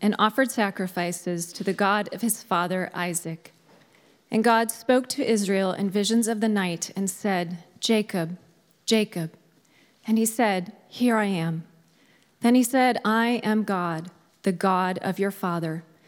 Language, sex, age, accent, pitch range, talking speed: English, female, 30-49, American, 175-220 Hz, 155 wpm